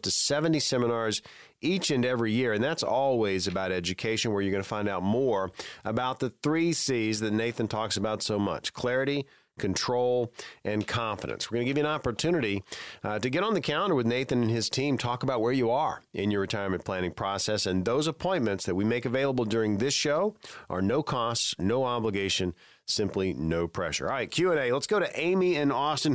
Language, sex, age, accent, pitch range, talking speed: English, male, 40-59, American, 110-140 Hz, 200 wpm